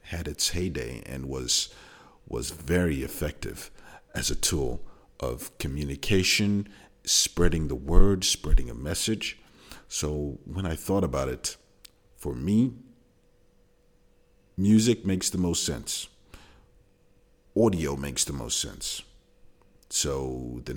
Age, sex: 50-69, male